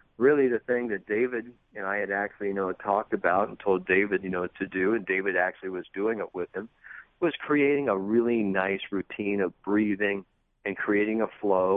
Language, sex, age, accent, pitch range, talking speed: English, male, 50-69, American, 100-120 Hz, 205 wpm